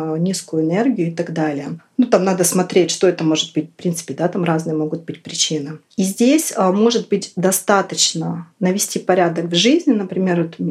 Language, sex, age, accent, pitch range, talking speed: Russian, female, 30-49, native, 160-190 Hz, 180 wpm